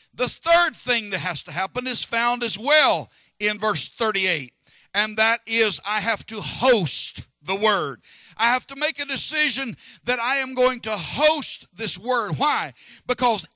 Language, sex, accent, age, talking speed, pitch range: English, male, American, 60-79, 175 wpm, 190-260 Hz